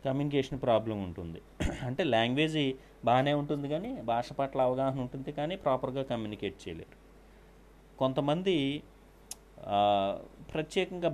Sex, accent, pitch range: male, native, 105-145 Hz